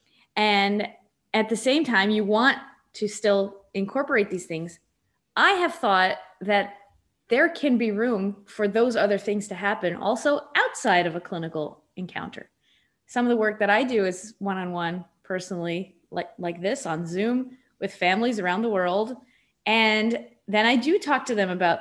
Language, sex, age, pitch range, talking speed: English, female, 20-39, 190-245 Hz, 165 wpm